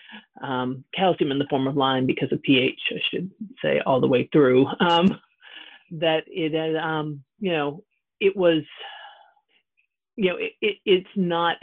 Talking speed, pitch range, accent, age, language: 150 wpm, 140-165 Hz, American, 40-59, English